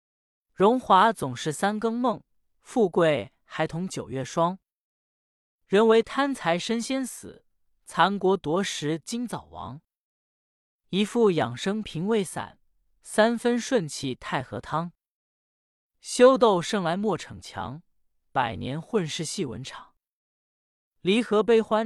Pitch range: 145-215 Hz